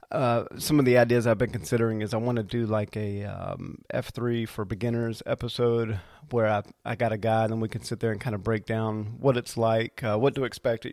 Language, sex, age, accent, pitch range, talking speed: English, male, 30-49, American, 110-130 Hz, 240 wpm